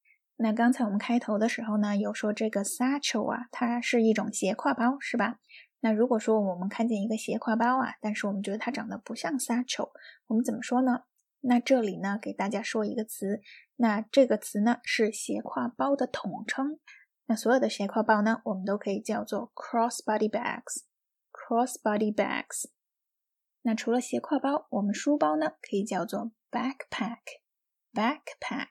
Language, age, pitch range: Chinese, 20-39, 210-255 Hz